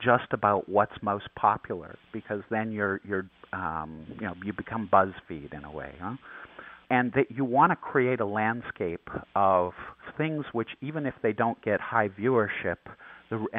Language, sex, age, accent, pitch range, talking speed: English, male, 50-69, American, 100-125 Hz, 170 wpm